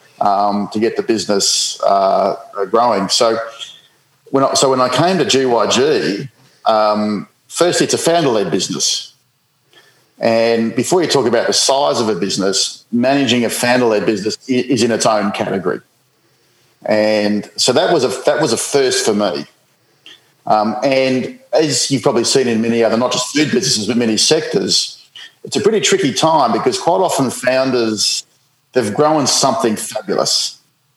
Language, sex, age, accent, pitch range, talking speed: English, male, 40-59, Australian, 110-135 Hz, 155 wpm